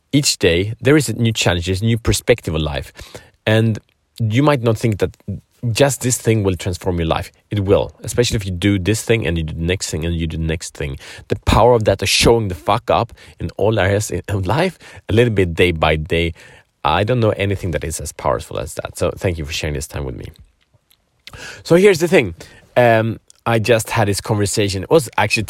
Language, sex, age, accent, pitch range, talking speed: Swedish, male, 30-49, Norwegian, 85-115 Hz, 225 wpm